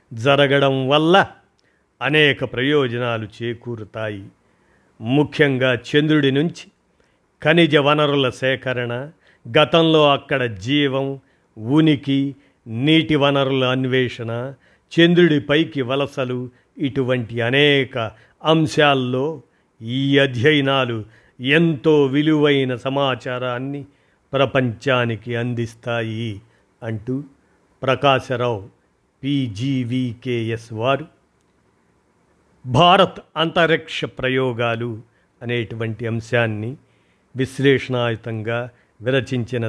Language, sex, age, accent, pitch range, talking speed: Telugu, male, 50-69, native, 115-140 Hz, 65 wpm